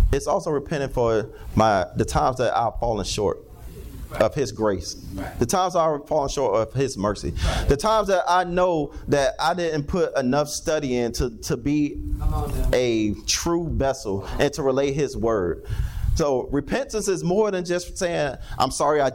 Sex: male